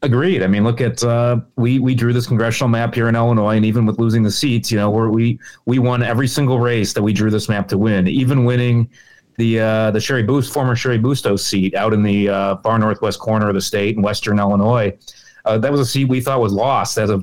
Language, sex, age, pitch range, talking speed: English, male, 30-49, 100-120 Hz, 250 wpm